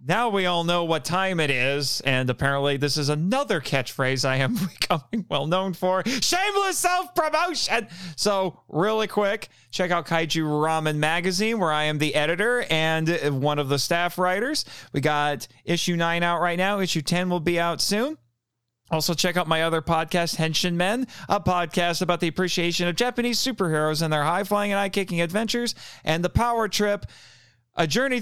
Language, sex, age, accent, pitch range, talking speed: English, male, 40-59, American, 135-190 Hz, 170 wpm